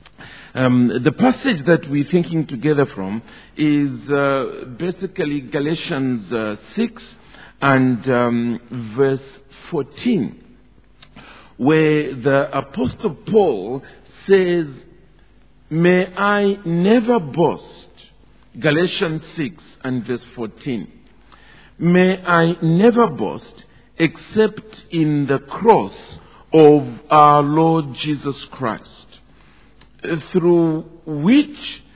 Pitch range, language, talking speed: 135-185 Hz, English, 90 wpm